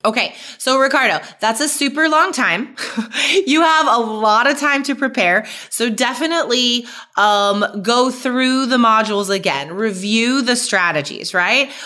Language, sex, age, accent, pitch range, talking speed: English, female, 20-39, American, 205-280 Hz, 140 wpm